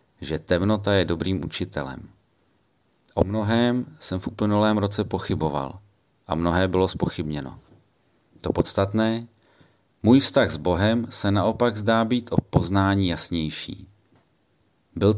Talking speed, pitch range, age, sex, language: 120 wpm, 90-110 Hz, 30-49, male, Czech